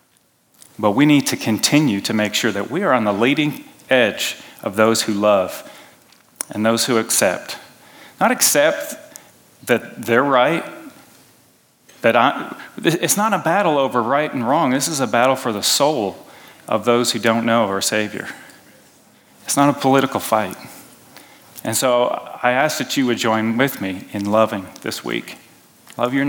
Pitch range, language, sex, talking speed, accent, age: 110-140 Hz, English, male, 165 wpm, American, 40-59